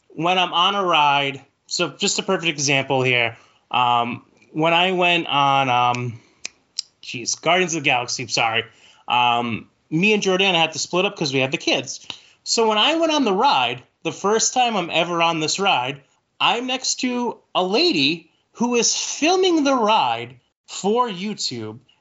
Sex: male